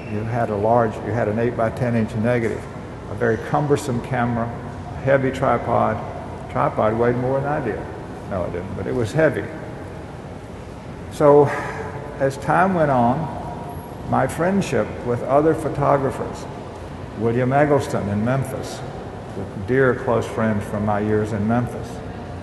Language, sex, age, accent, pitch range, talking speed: English, male, 50-69, American, 110-130 Hz, 145 wpm